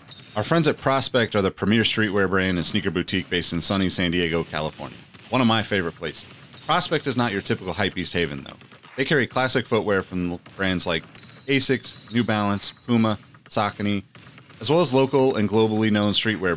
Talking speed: 190 wpm